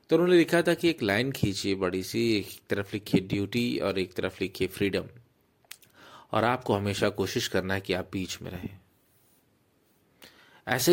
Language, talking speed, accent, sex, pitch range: Hindi, 170 wpm, native, male, 100-130 Hz